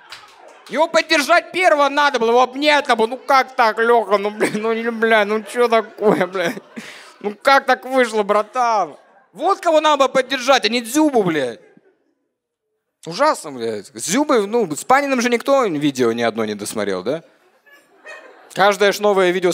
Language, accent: Russian, native